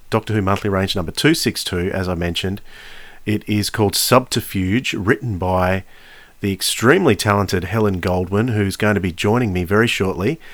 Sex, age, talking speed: male, 40-59, 160 wpm